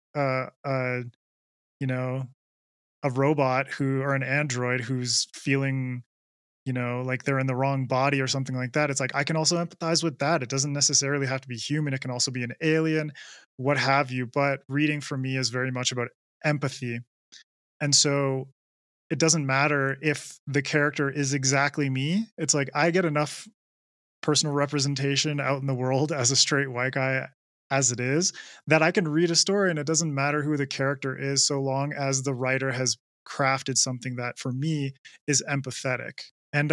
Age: 20-39